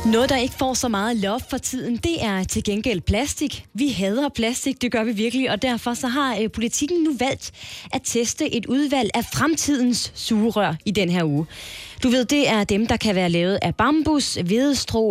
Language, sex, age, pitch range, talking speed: Danish, female, 20-39, 185-265 Hz, 205 wpm